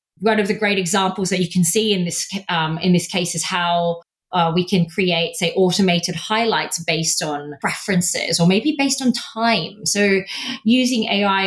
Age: 20-39